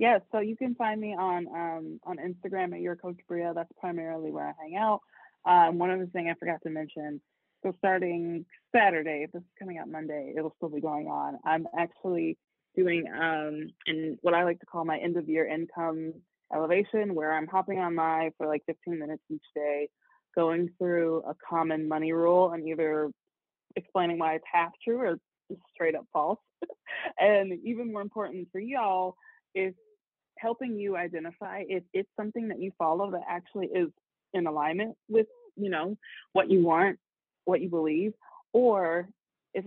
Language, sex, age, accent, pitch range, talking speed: English, female, 20-39, American, 160-190 Hz, 180 wpm